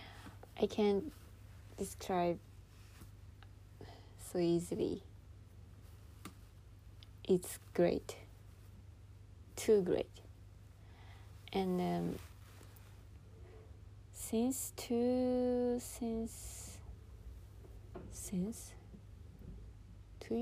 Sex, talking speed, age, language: female, 45 wpm, 20-39, English